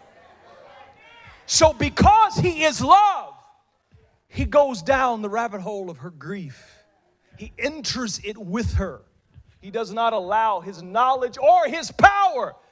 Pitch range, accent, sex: 155-260 Hz, American, male